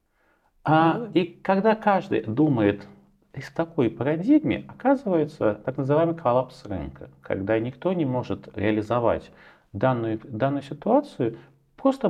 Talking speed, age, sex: 105 wpm, 40-59, male